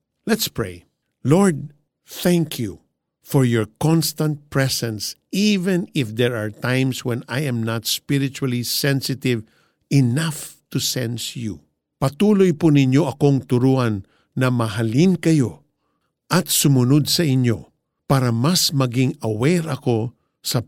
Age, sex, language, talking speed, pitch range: 50-69, male, Filipino, 120 wpm, 120-155 Hz